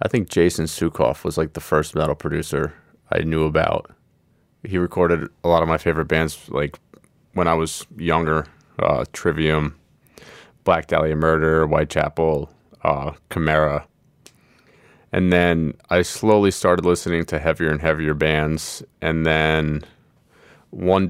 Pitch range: 75-85 Hz